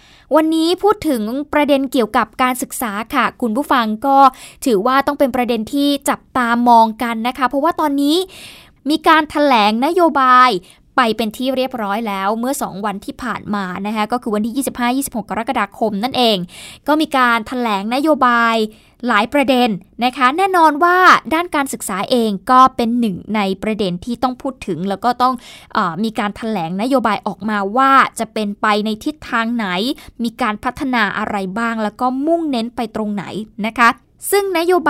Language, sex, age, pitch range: Thai, female, 20-39, 215-275 Hz